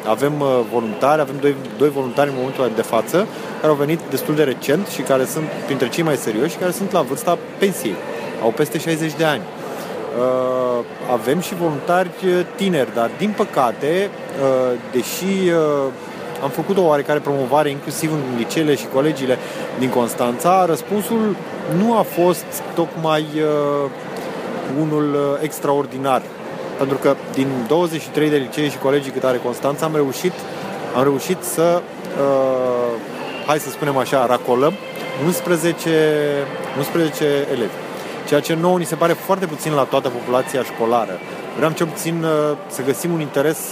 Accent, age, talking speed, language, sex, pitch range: native, 30-49, 145 wpm, Romanian, male, 135-175 Hz